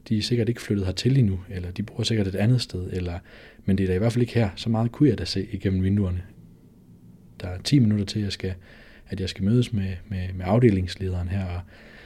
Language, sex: Danish, male